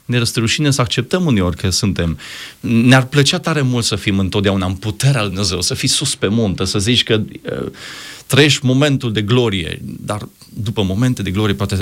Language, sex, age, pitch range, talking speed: Romanian, male, 30-49, 95-125 Hz, 185 wpm